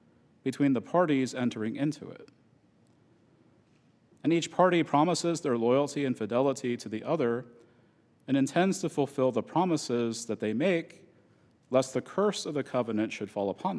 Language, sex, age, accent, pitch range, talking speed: English, male, 40-59, American, 115-155 Hz, 150 wpm